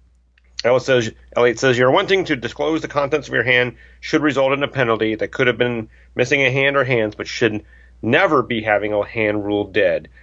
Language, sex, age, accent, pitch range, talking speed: English, male, 40-59, American, 105-135 Hz, 205 wpm